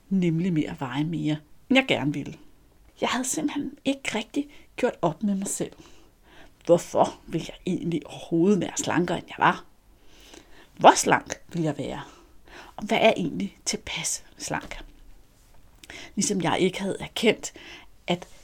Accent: native